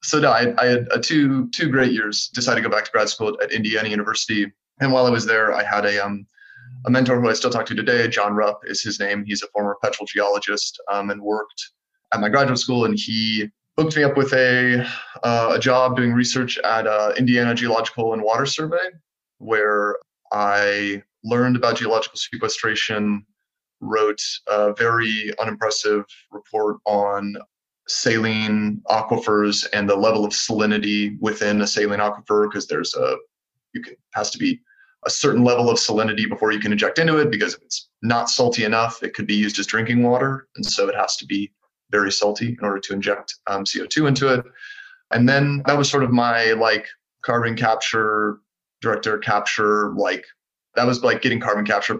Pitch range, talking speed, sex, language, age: 105-125 Hz, 190 wpm, male, English, 20-39